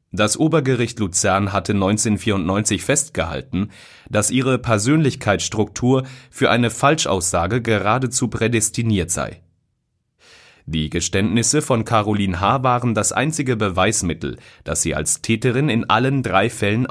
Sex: male